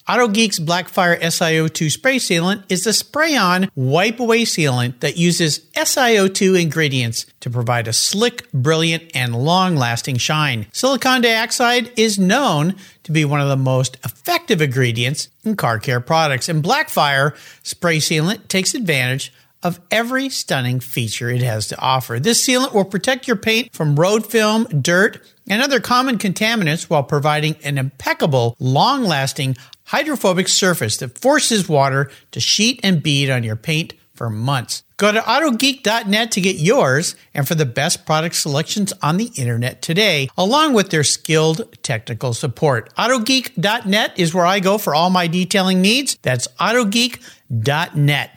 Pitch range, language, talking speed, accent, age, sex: 140-225 Hz, English, 150 wpm, American, 50-69, male